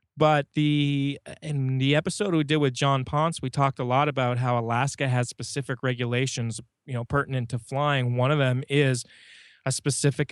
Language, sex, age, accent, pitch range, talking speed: English, male, 20-39, American, 120-140 Hz, 180 wpm